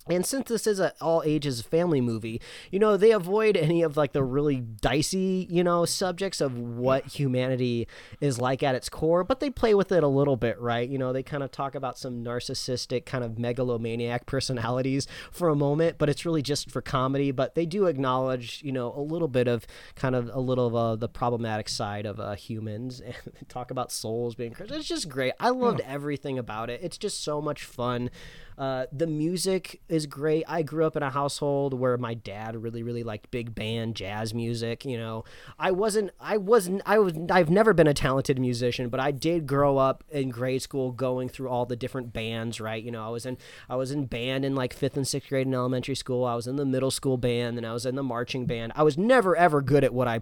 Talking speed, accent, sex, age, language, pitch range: 230 wpm, American, male, 30-49, English, 120-155 Hz